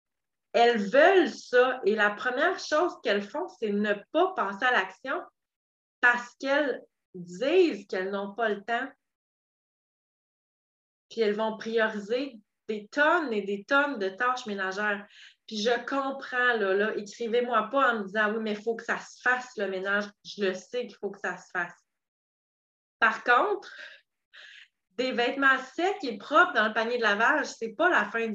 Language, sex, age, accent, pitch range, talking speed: French, female, 30-49, Canadian, 205-270 Hz, 170 wpm